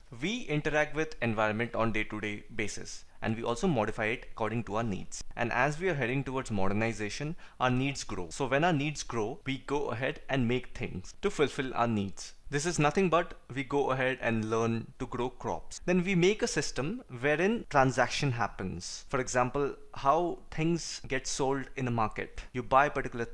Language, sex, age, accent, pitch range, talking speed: English, male, 20-39, Indian, 115-155 Hz, 195 wpm